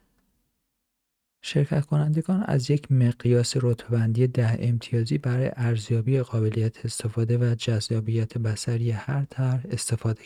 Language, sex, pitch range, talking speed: Persian, male, 110-125 Hz, 100 wpm